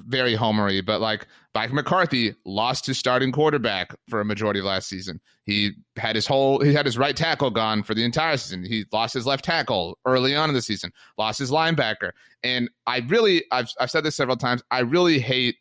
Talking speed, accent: 210 wpm, American